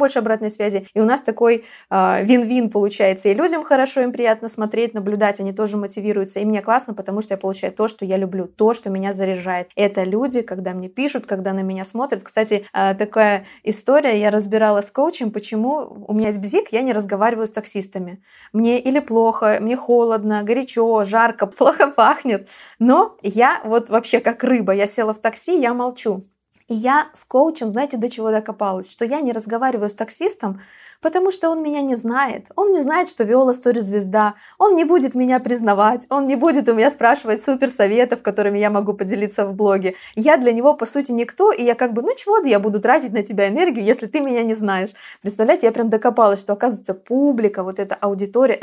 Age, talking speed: 20-39, 195 wpm